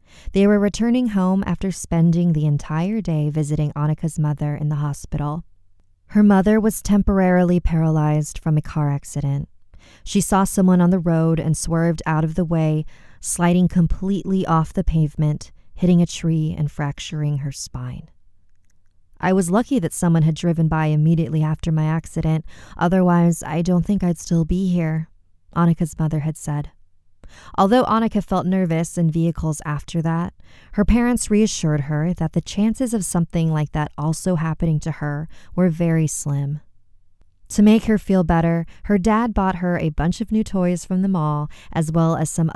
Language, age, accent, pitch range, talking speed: English, 20-39, American, 150-180 Hz, 170 wpm